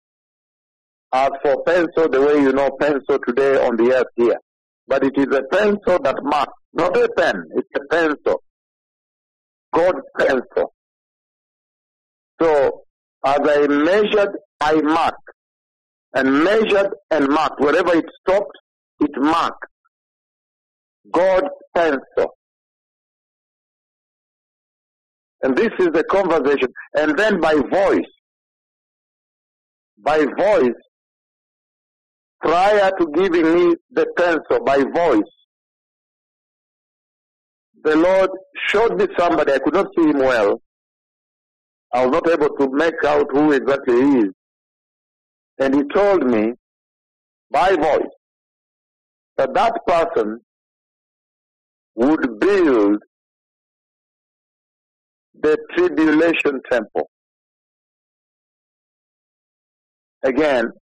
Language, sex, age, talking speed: English, male, 60-79, 100 wpm